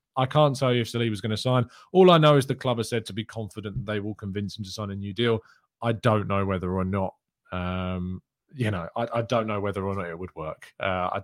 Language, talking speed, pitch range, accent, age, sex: English, 280 wpm, 105-145 Hz, British, 20-39, male